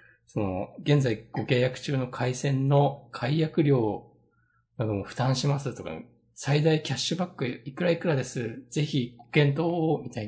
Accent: native